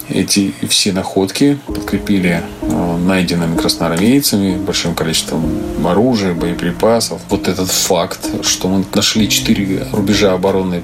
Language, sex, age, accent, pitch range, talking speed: Russian, male, 30-49, native, 95-110 Hz, 105 wpm